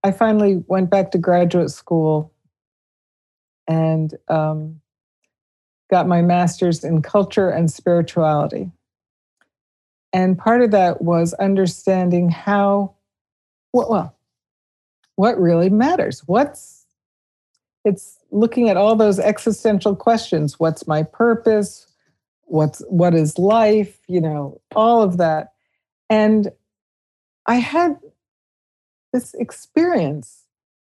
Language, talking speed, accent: English, 100 wpm, American